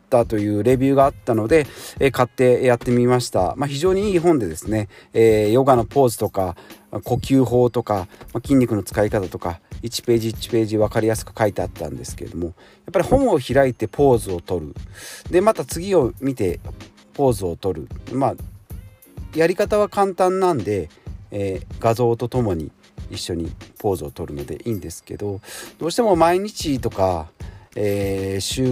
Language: Japanese